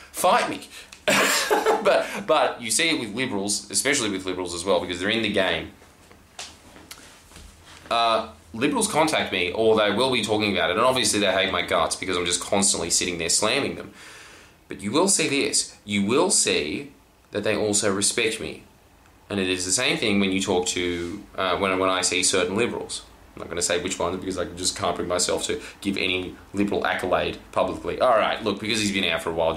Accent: Australian